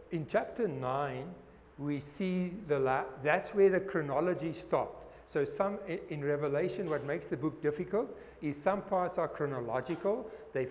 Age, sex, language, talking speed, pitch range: 60-79, male, English, 150 wpm, 150-195 Hz